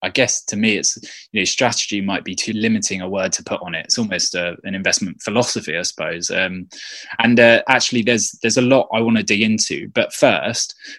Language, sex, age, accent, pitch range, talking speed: English, male, 20-39, British, 95-125 Hz, 225 wpm